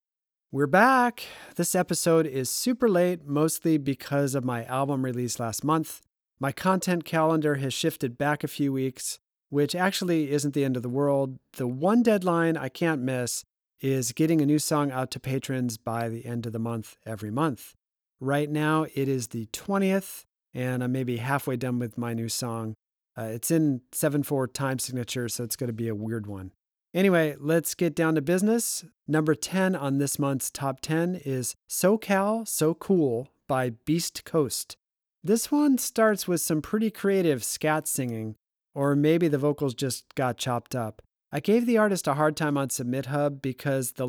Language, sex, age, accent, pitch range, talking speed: English, male, 40-59, American, 125-160 Hz, 180 wpm